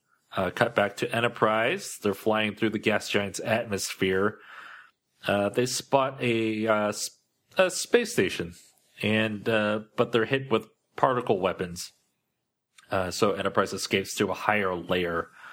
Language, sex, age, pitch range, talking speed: English, male, 30-49, 95-125 Hz, 140 wpm